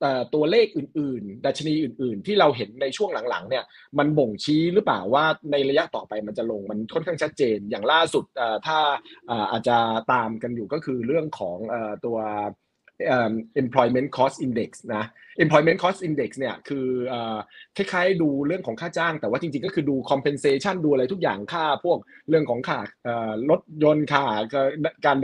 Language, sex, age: Thai, male, 20-39